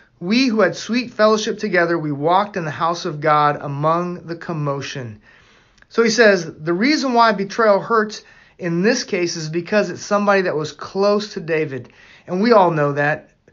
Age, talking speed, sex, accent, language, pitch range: 30-49, 180 wpm, male, American, English, 160-205 Hz